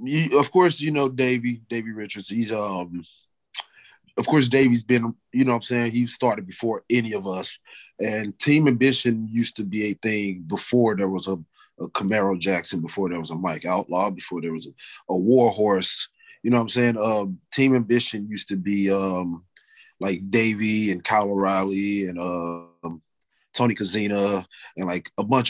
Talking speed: 185 wpm